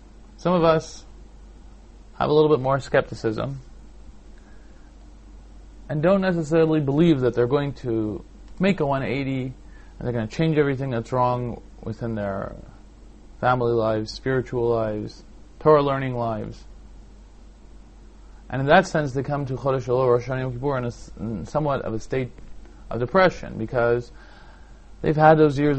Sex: male